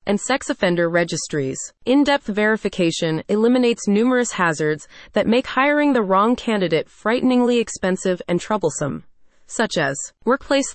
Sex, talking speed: female, 125 wpm